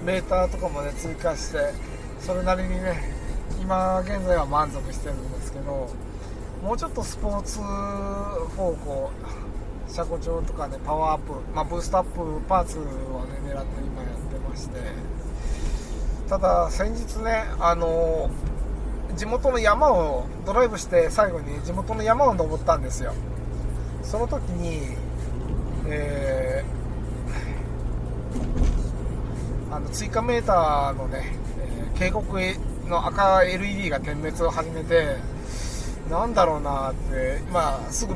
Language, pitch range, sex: Japanese, 130-185 Hz, male